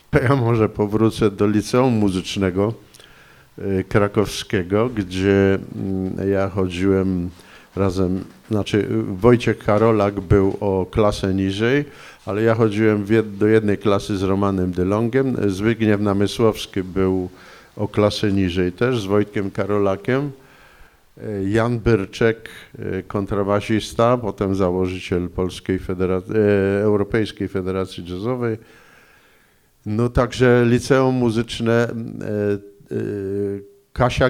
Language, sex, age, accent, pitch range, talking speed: Polish, male, 50-69, native, 100-120 Hz, 90 wpm